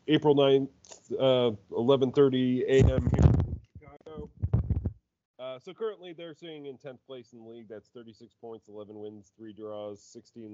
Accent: American